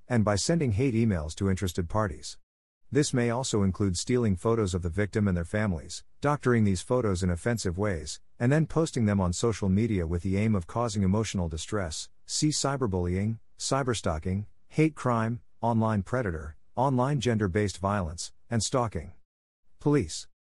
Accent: American